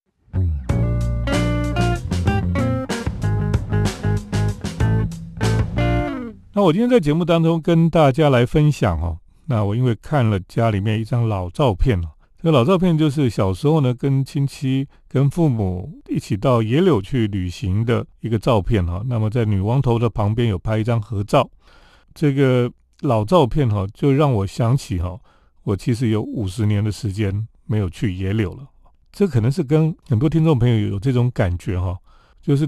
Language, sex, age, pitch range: Chinese, male, 40-59, 105-140 Hz